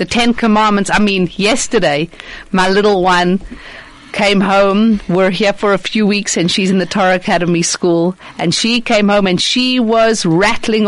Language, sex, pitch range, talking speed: English, female, 200-260 Hz, 175 wpm